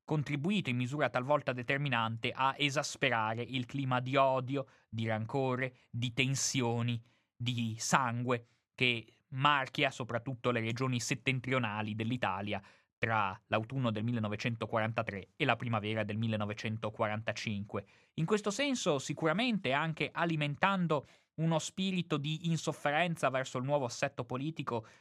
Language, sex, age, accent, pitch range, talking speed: Italian, male, 20-39, native, 120-150 Hz, 115 wpm